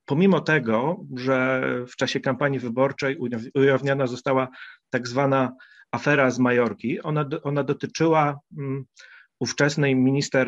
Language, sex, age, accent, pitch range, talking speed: Polish, male, 40-59, native, 120-150 Hz, 115 wpm